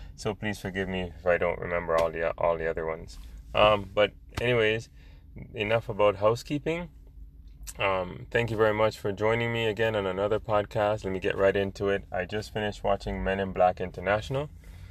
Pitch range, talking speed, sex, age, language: 85-110 Hz, 185 wpm, male, 20-39, English